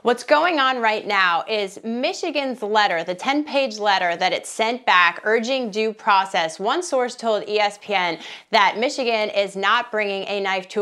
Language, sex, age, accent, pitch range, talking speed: English, female, 30-49, American, 205-270 Hz, 165 wpm